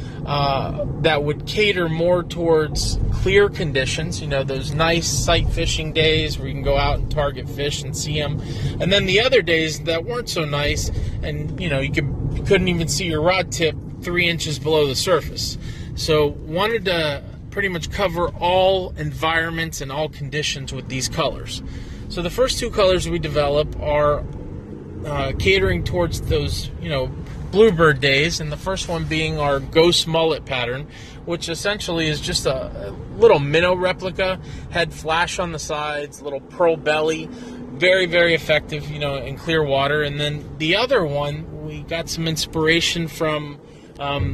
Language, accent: English, American